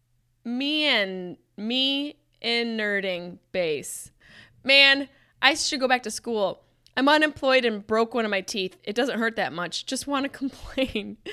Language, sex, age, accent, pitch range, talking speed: English, female, 20-39, American, 190-255 Hz, 160 wpm